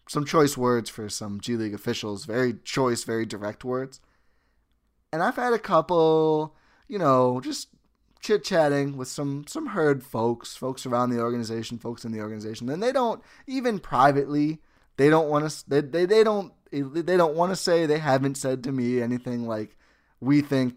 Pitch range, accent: 120-160 Hz, American